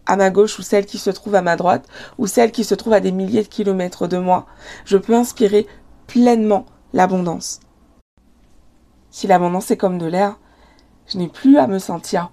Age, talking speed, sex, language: 20-39, 195 wpm, female, French